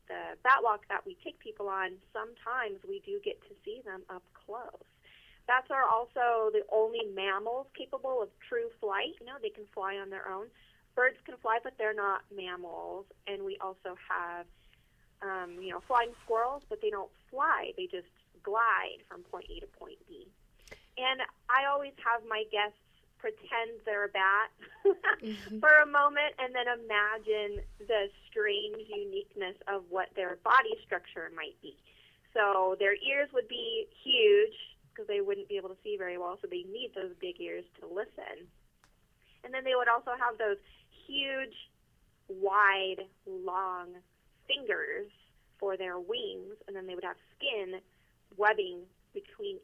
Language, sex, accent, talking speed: English, female, American, 165 wpm